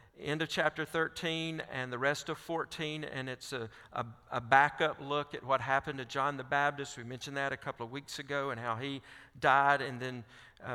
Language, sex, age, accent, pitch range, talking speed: English, male, 50-69, American, 120-150 Hz, 210 wpm